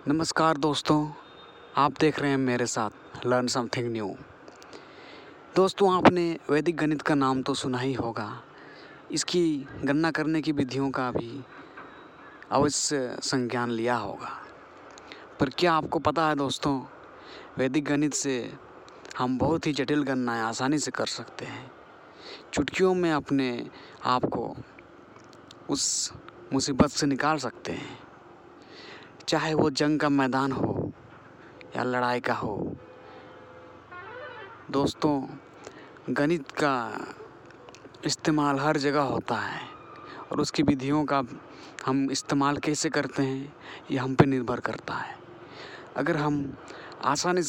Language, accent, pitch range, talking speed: Hindi, native, 130-155 Hz, 125 wpm